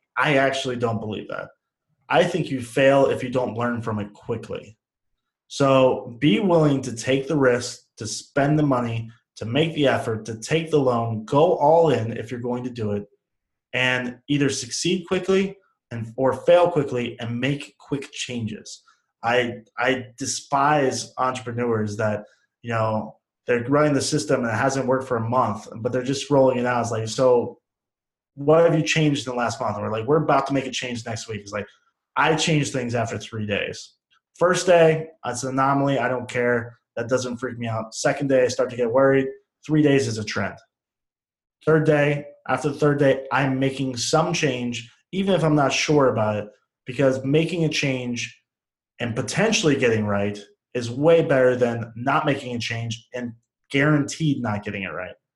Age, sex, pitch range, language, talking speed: 20-39, male, 115-145 Hz, English, 190 wpm